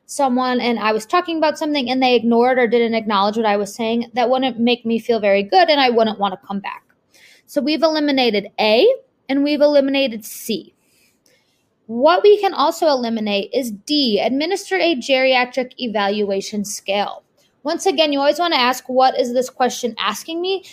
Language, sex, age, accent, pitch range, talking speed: English, female, 20-39, American, 225-290 Hz, 185 wpm